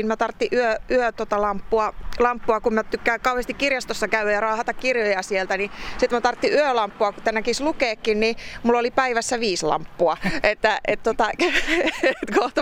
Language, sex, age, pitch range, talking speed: Finnish, female, 30-49, 185-240 Hz, 155 wpm